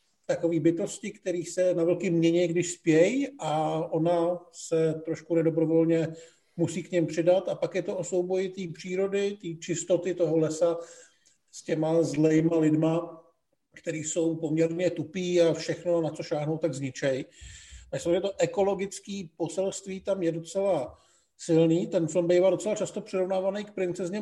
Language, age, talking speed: Czech, 50-69, 155 wpm